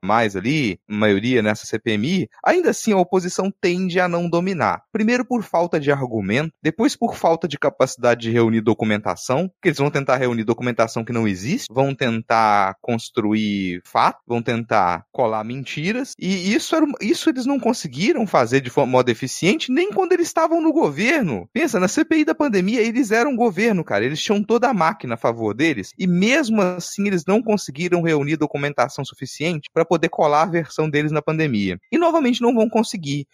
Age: 30-49